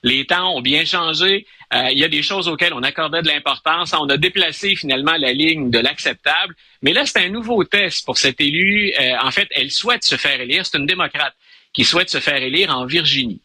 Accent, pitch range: Canadian, 135-180 Hz